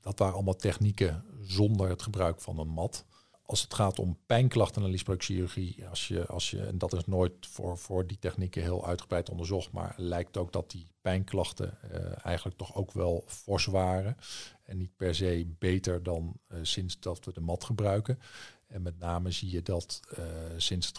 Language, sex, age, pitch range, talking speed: Dutch, male, 50-69, 90-105 Hz, 190 wpm